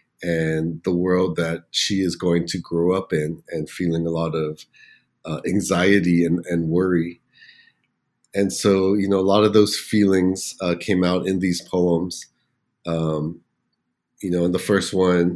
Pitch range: 85-95 Hz